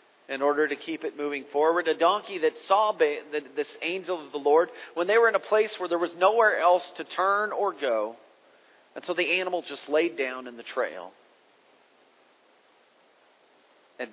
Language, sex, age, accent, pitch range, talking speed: English, male, 40-59, American, 135-200 Hz, 180 wpm